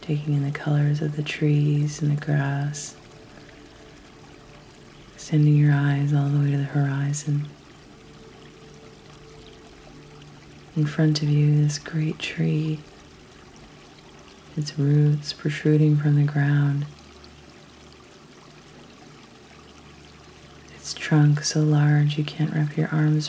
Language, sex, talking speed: English, female, 105 wpm